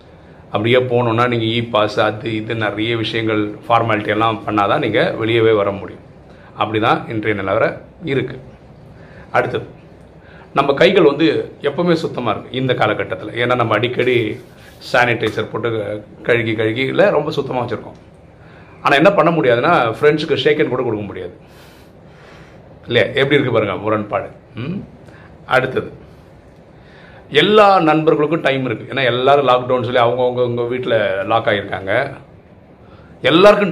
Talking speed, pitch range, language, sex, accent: 125 wpm, 110-145 Hz, Tamil, male, native